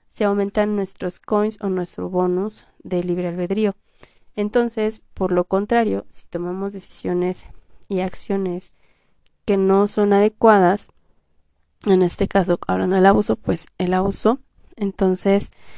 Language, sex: Spanish, female